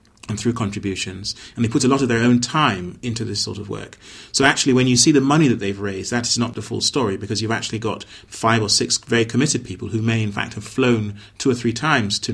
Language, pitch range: English, 105-130 Hz